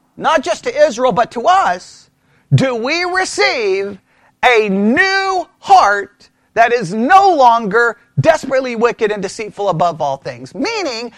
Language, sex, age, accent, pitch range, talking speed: English, male, 40-59, American, 195-310 Hz, 135 wpm